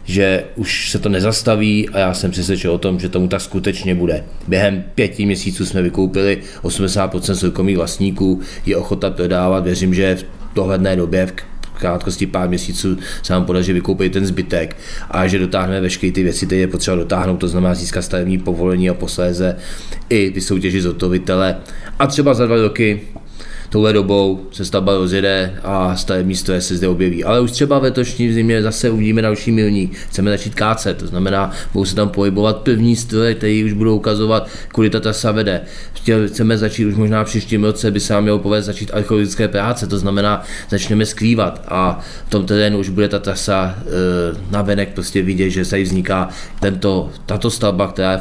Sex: male